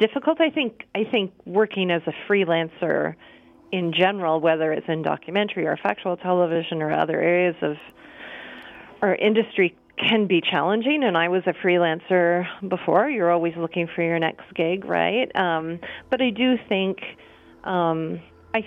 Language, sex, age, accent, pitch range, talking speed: English, female, 40-59, American, 165-200 Hz, 155 wpm